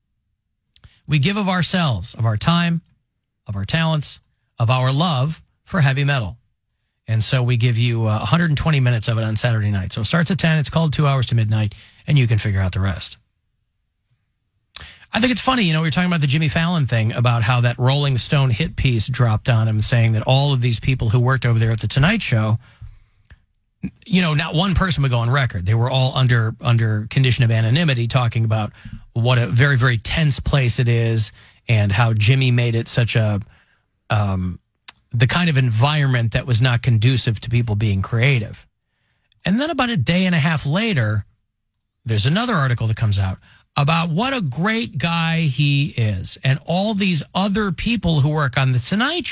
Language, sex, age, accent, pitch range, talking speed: English, male, 40-59, American, 110-155 Hz, 200 wpm